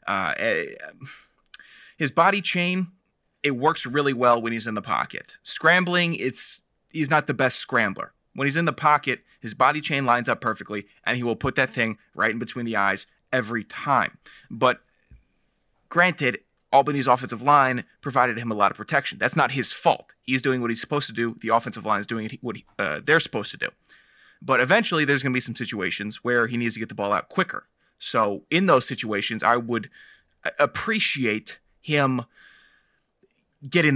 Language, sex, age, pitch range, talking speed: English, male, 20-39, 115-145 Hz, 185 wpm